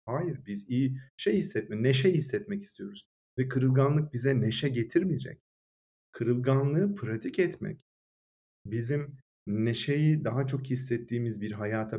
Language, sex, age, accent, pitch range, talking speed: Turkish, male, 40-59, native, 115-145 Hz, 115 wpm